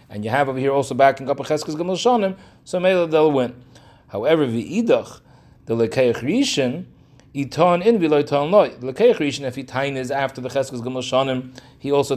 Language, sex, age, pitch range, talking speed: English, male, 30-49, 125-155 Hz, 185 wpm